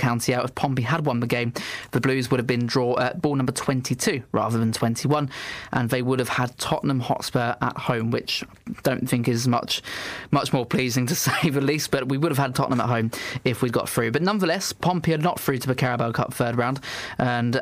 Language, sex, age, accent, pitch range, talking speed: English, male, 20-39, British, 120-145 Hz, 230 wpm